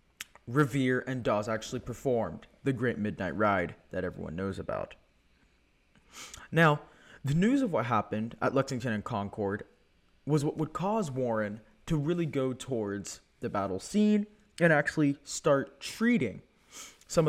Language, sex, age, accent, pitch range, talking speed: English, male, 20-39, American, 120-165 Hz, 140 wpm